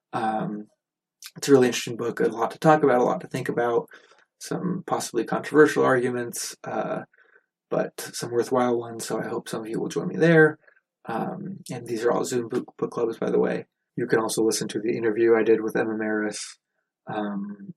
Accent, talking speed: American, 205 wpm